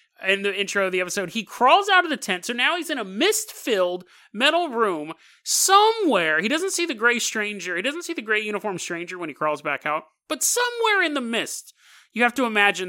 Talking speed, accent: 225 wpm, American